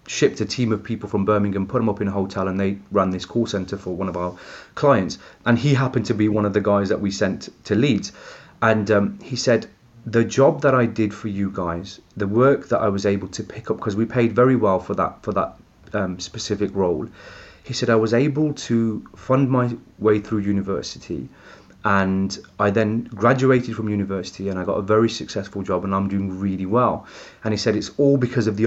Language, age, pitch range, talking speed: English, 30-49, 100-120 Hz, 225 wpm